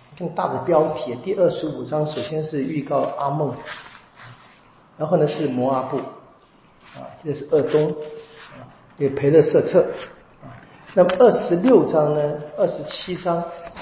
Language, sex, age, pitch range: Chinese, male, 50-69, 140-170 Hz